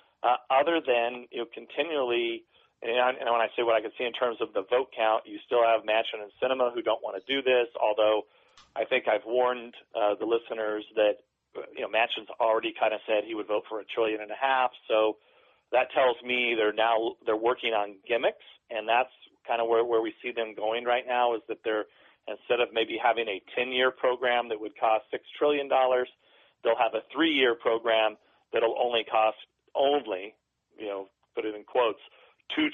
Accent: American